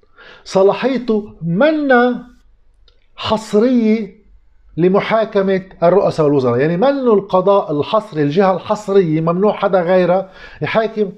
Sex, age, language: male, 50-69, Arabic